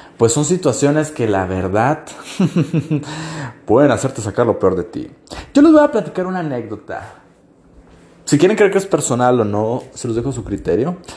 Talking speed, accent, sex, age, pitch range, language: 185 wpm, Mexican, male, 30-49, 135-215 Hz, Spanish